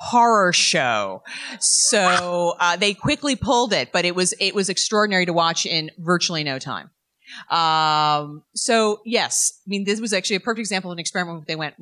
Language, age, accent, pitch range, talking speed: English, 30-49, American, 170-220 Hz, 185 wpm